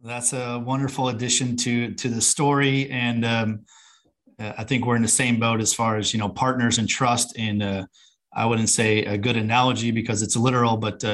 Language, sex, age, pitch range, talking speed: English, male, 30-49, 110-125 Hz, 200 wpm